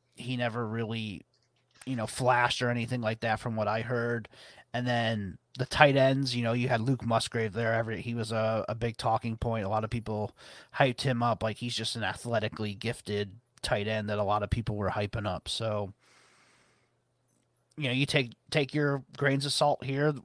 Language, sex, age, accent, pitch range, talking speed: English, male, 30-49, American, 110-130 Hz, 200 wpm